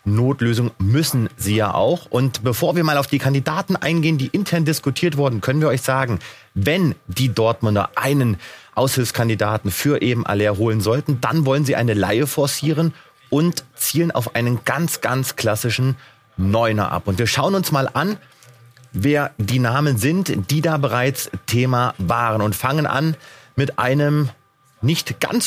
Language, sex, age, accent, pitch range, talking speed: German, male, 30-49, German, 120-150 Hz, 160 wpm